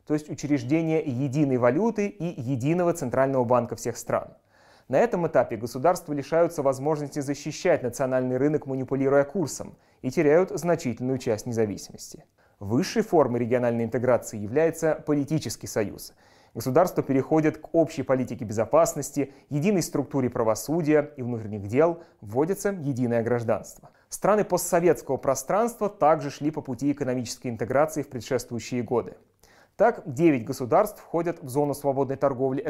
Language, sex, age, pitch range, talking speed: Russian, male, 30-49, 125-160 Hz, 125 wpm